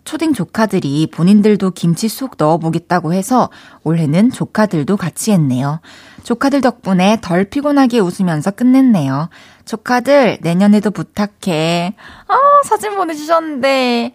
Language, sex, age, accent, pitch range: Korean, female, 20-39, native, 170-240 Hz